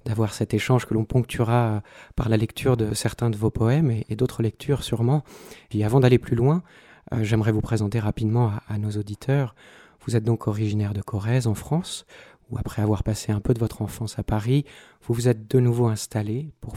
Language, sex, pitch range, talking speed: French, male, 110-125 Hz, 200 wpm